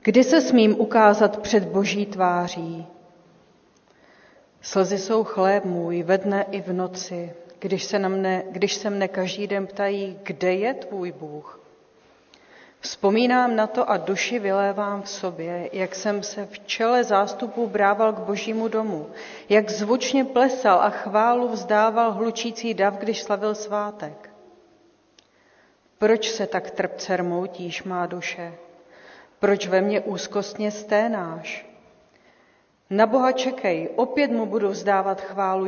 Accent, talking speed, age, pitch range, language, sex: native, 130 wpm, 40-59, 185-215 Hz, Czech, female